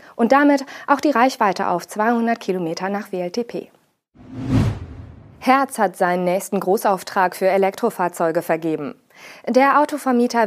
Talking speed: 115 wpm